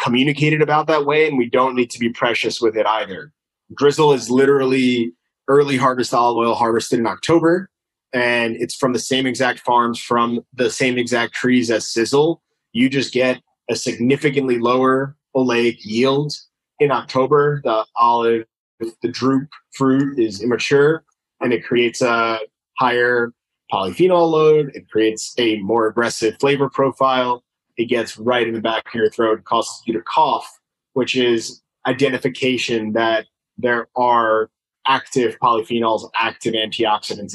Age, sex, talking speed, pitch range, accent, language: 20-39, male, 150 wpm, 115-140 Hz, American, English